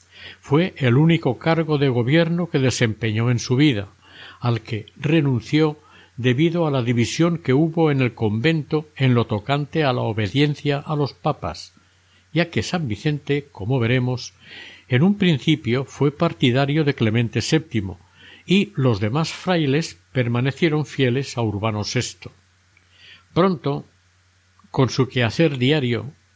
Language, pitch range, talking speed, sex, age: Spanish, 110-150 Hz, 135 wpm, male, 60-79